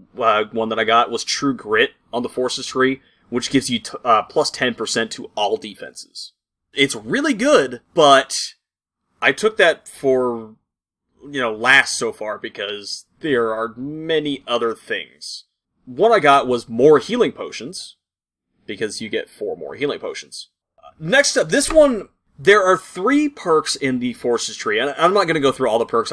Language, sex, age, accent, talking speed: English, male, 30-49, American, 175 wpm